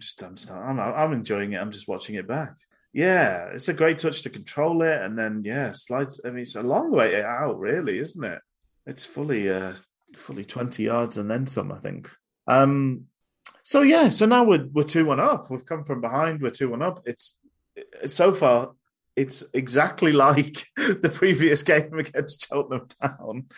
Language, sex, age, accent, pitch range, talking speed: English, male, 30-49, British, 105-145 Hz, 185 wpm